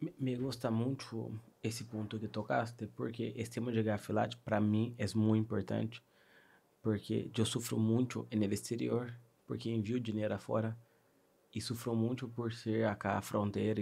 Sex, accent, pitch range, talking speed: male, Brazilian, 105-125 Hz, 155 wpm